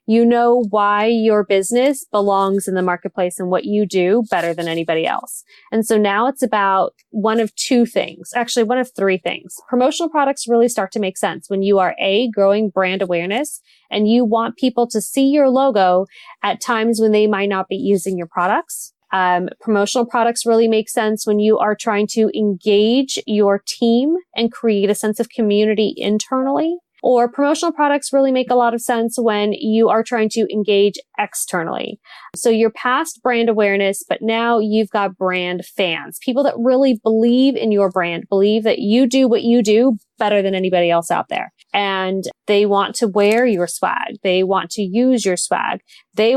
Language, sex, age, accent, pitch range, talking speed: English, female, 20-39, American, 195-240 Hz, 190 wpm